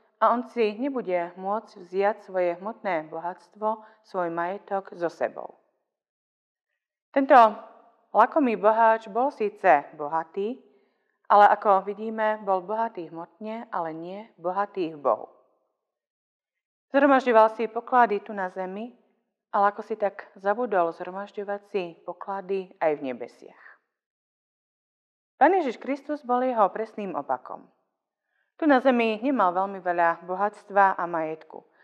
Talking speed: 120 wpm